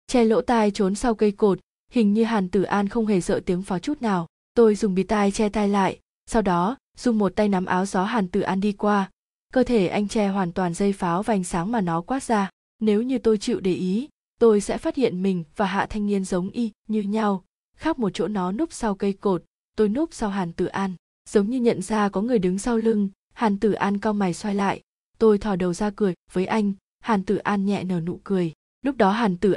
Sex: female